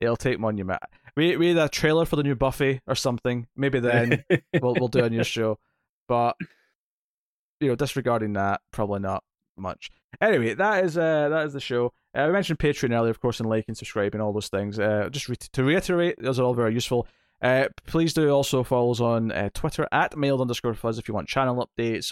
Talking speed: 215 wpm